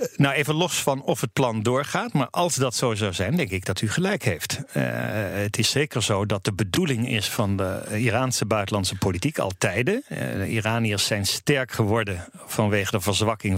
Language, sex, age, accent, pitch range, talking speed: Dutch, male, 50-69, Dutch, 100-125 Hz, 200 wpm